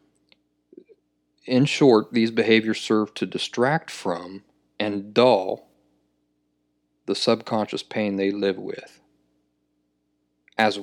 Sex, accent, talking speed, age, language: male, American, 95 wpm, 40-59, English